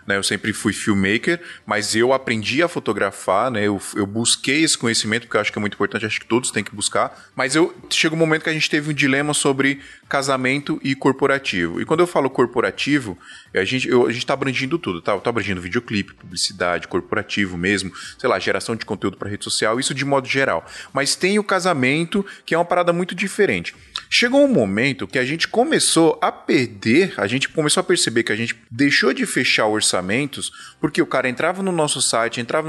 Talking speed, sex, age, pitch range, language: 205 wpm, male, 20-39, 120-175 Hz, Portuguese